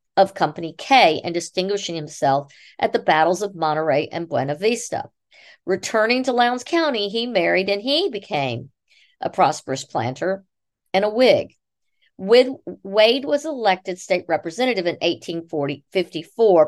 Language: English